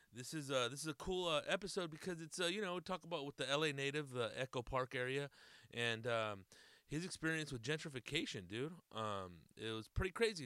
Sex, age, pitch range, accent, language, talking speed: male, 30-49, 115-150 Hz, American, English, 210 wpm